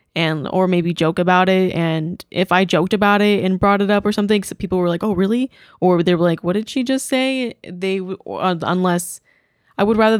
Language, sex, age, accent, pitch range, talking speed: English, female, 10-29, American, 175-210 Hz, 230 wpm